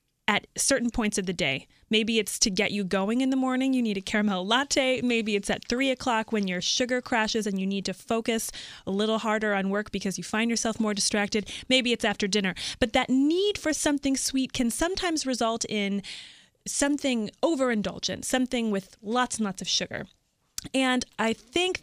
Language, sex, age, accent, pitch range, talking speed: English, female, 20-39, American, 205-260 Hz, 195 wpm